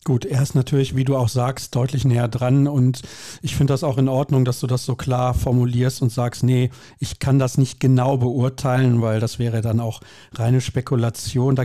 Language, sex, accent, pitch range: German, male, German, 120-150 Hz